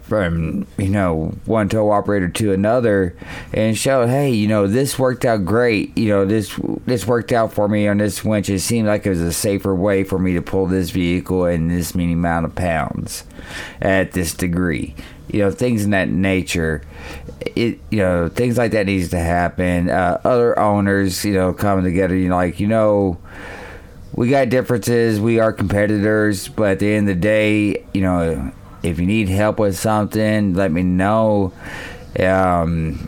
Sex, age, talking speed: male, 30-49, 185 wpm